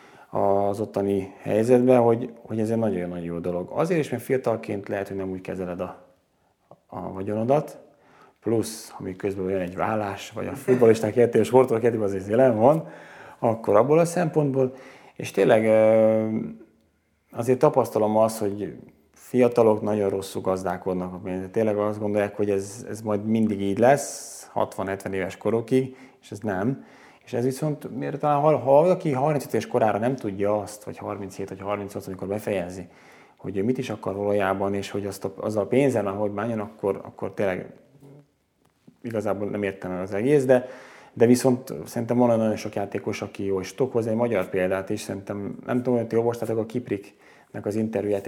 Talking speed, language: 165 wpm, Hungarian